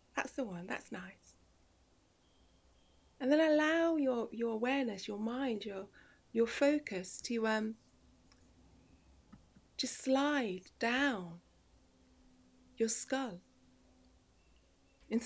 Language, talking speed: English, 95 wpm